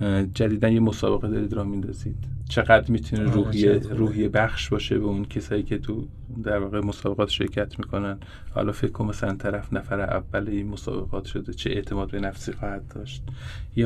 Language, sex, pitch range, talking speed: Persian, male, 105-120 Hz, 170 wpm